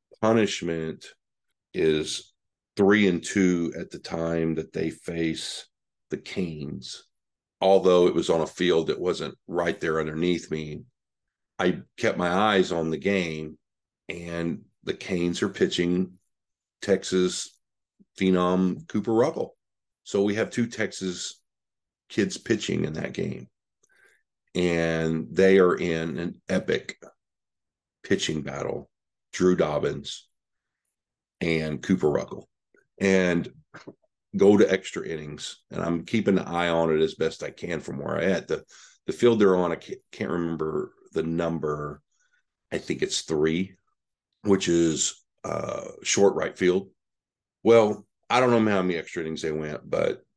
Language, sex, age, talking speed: English, male, 50-69, 140 wpm